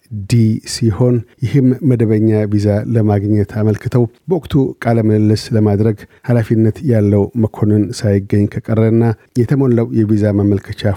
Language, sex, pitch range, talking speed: Amharic, male, 100-115 Hz, 100 wpm